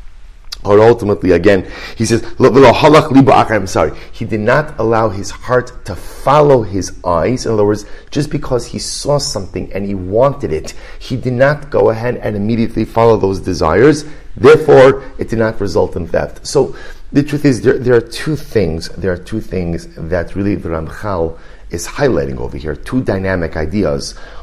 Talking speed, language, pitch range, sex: 170 wpm, English, 90-130 Hz, male